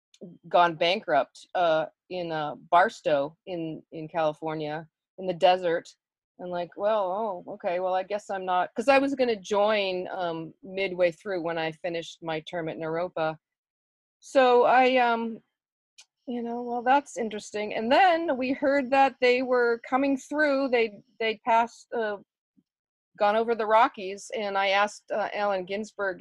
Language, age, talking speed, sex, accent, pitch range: English, 40-59, 160 wpm, female, American, 175-230 Hz